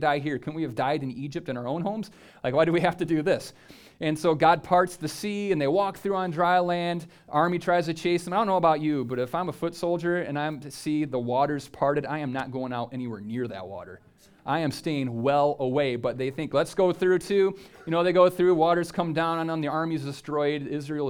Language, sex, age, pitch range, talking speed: English, male, 30-49, 145-180 Hz, 260 wpm